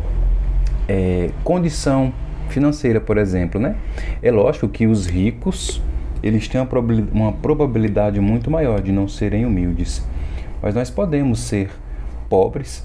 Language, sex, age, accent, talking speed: Portuguese, male, 20-39, Brazilian, 115 wpm